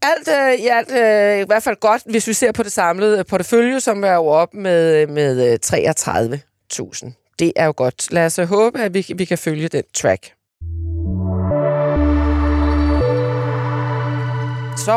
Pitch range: 175-240 Hz